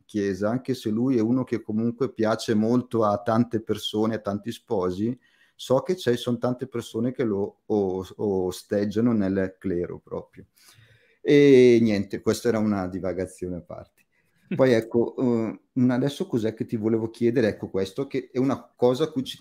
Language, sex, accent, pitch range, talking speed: Italian, male, native, 105-130 Hz, 170 wpm